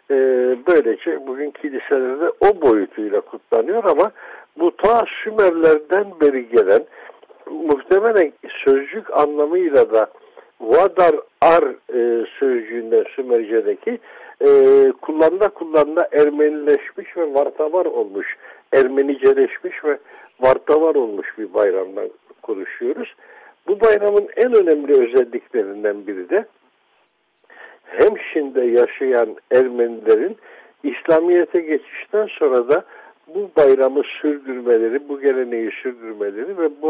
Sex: male